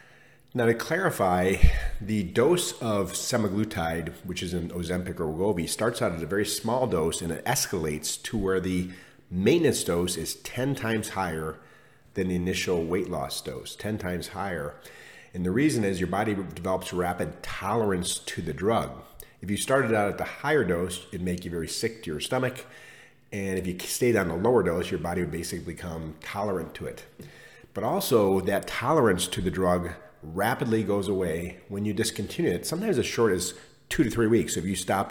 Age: 40-59